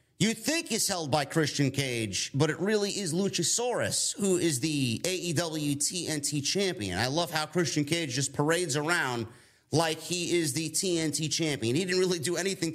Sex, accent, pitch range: male, American, 140-175 Hz